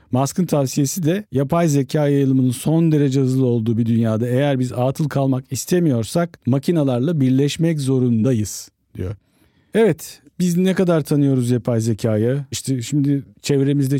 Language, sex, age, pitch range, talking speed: Turkish, male, 50-69, 120-145 Hz, 135 wpm